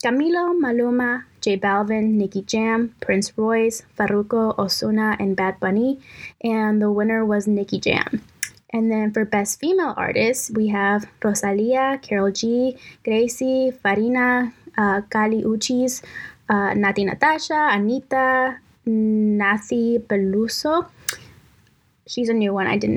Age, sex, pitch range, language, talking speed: 10-29, female, 205-240 Hz, English, 125 wpm